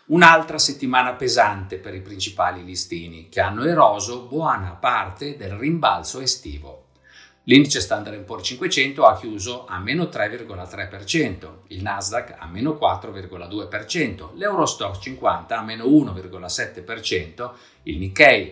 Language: Italian